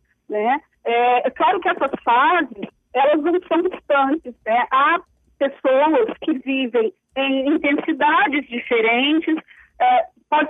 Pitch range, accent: 260-340 Hz, Brazilian